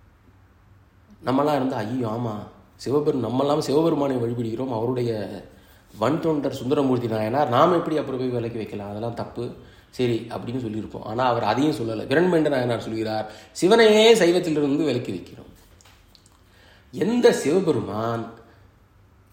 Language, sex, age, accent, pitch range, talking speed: Tamil, male, 30-49, native, 105-145 Hz, 110 wpm